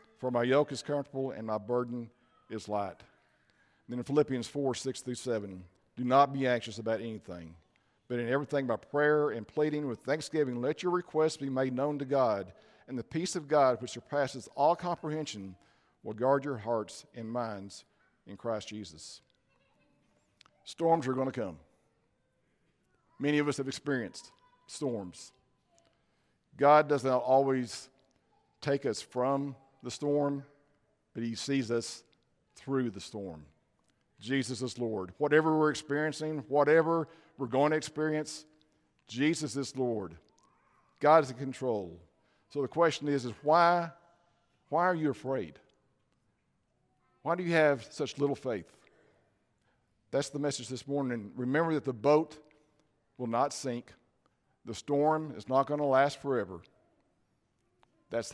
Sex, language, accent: male, English, American